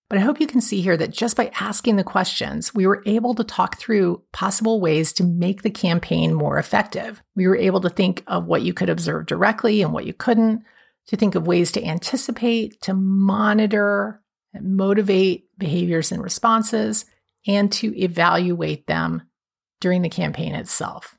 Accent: American